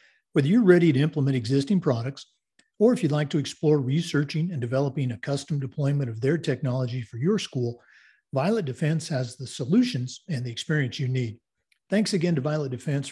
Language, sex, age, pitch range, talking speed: English, male, 50-69, 130-165 Hz, 185 wpm